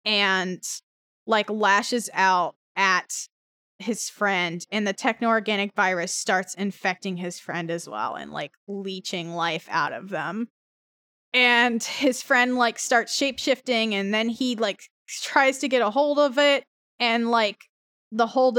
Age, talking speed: 10-29, 145 wpm